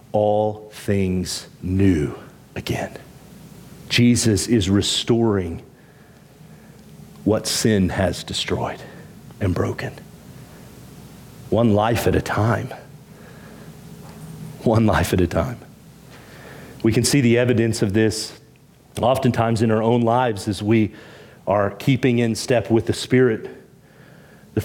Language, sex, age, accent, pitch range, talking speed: English, male, 40-59, American, 105-125 Hz, 110 wpm